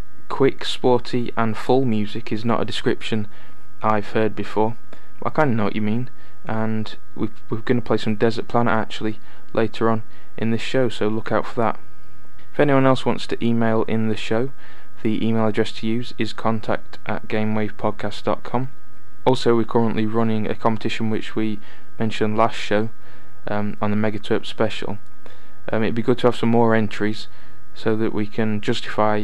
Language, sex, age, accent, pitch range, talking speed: English, male, 20-39, British, 105-115 Hz, 180 wpm